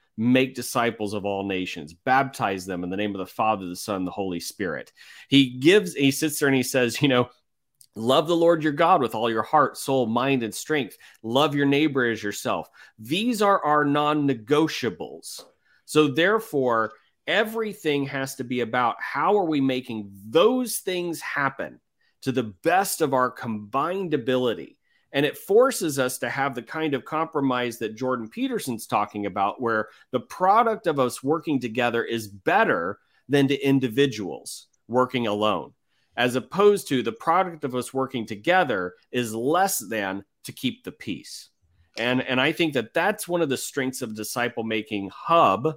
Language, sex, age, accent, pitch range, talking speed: English, male, 30-49, American, 110-155 Hz, 170 wpm